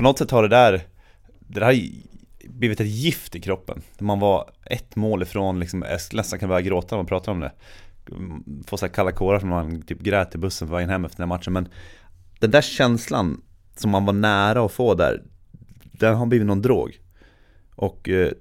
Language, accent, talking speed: Swedish, native, 210 wpm